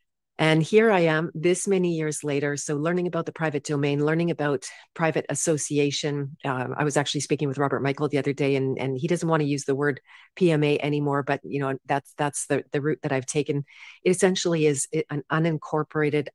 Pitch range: 145-170 Hz